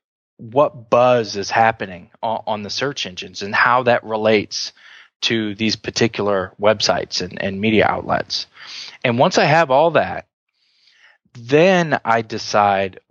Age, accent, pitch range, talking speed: 20-39, American, 110-155 Hz, 135 wpm